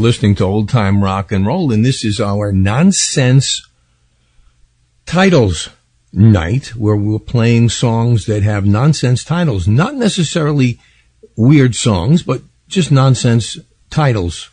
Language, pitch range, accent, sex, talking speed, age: English, 105-135 Hz, American, male, 125 wpm, 50-69